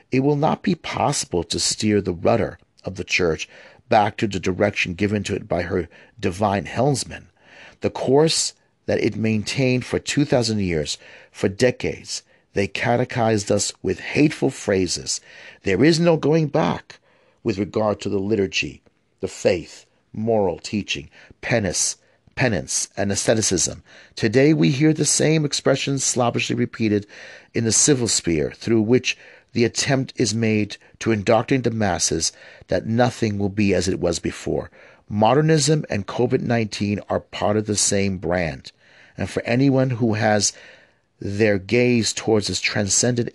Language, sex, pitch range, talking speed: English, male, 100-125 Hz, 145 wpm